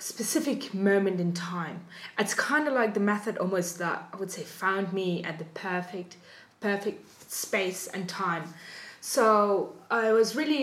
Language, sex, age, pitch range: English, female, 20-39, 185-235 Hz